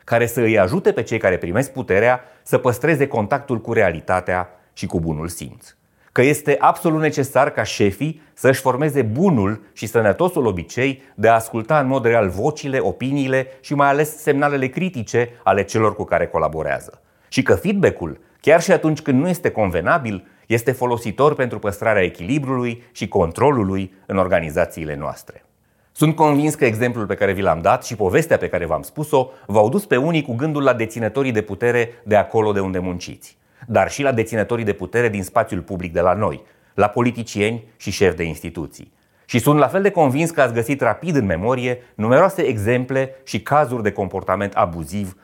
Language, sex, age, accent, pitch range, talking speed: Romanian, male, 30-49, native, 105-140 Hz, 180 wpm